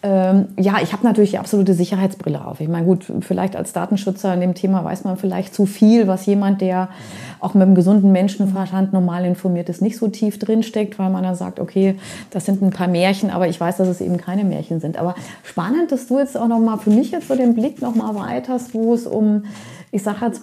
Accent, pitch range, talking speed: German, 185-215 Hz, 225 wpm